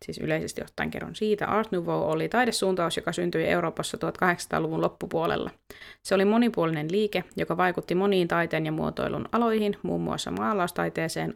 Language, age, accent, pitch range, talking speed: Finnish, 30-49, native, 160-205 Hz, 145 wpm